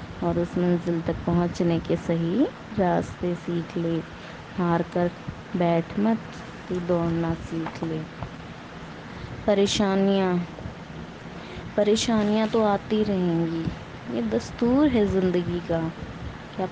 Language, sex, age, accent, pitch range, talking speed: Hindi, female, 20-39, native, 175-215 Hz, 105 wpm